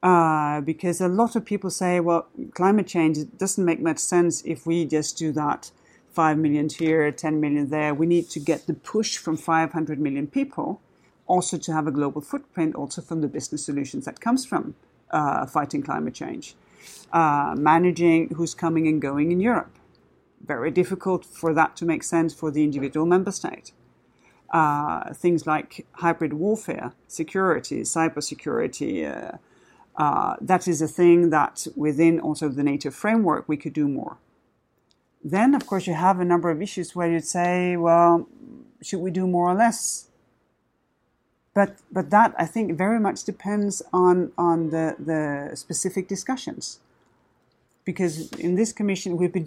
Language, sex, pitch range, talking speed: English, male, 160-190 Hz, 165 wpm